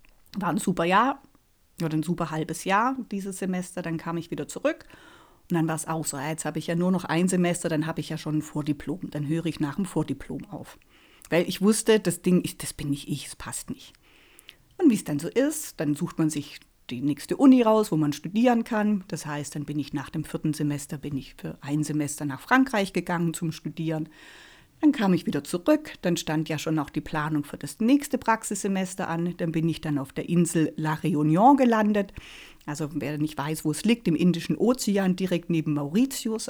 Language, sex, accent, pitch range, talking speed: German, female, German, 155-200 Hz, 220 wpm